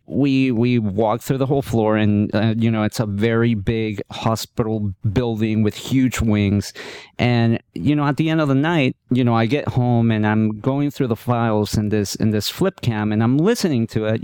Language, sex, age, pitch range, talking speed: English, male, 40-59, 105-135 Hz, 215 wpm